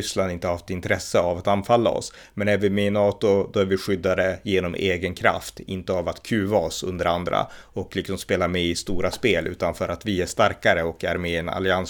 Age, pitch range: 30-49, 90-105 Hz